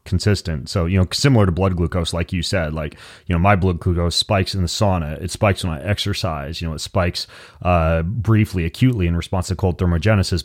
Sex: male